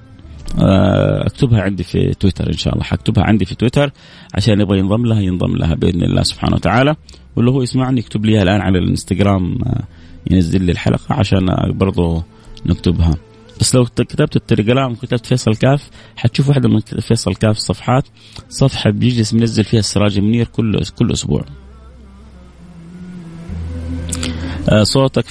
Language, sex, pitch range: Arabic, male, 95-125 Hz